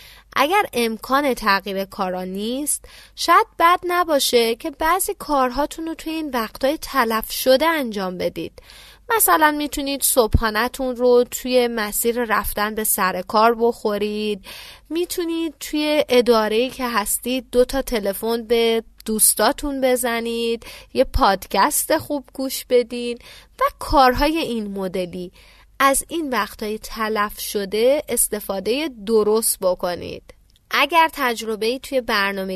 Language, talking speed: Persian, 115 wpm